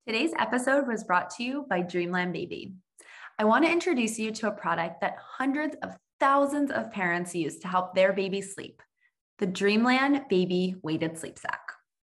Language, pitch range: English, 180-250 Hz